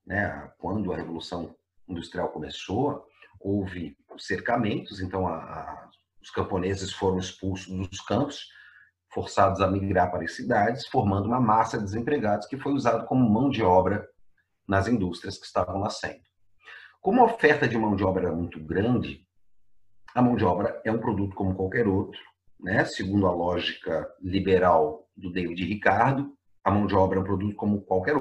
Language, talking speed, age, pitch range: Portuguese, 160 wpm, 40-59, 95-110 Hz